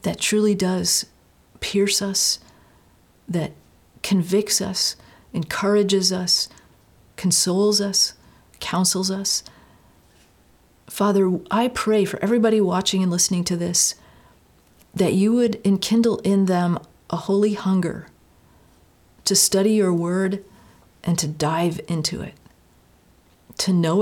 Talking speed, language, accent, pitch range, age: 110 wpm, English, American, 170-205 Hz, 40-59